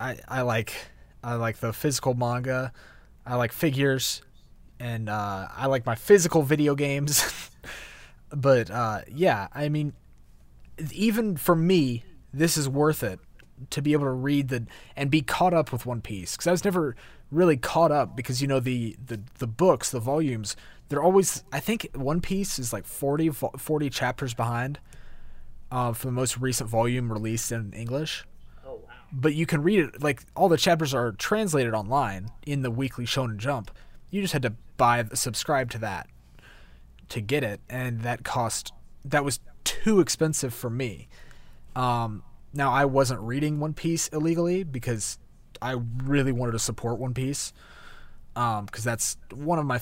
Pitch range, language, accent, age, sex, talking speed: 115-150 Hz, English, American, 20-39, male, 165 wpm